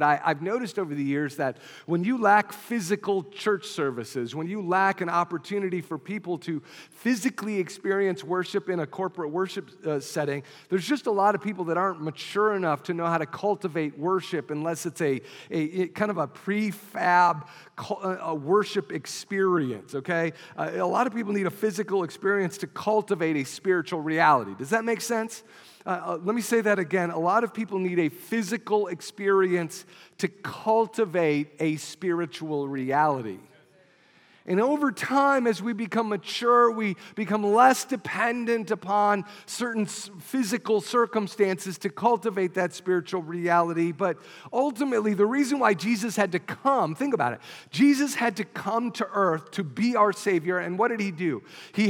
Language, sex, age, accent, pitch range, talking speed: English, male, 40-59, American, 170-220 Hz, 165 wpm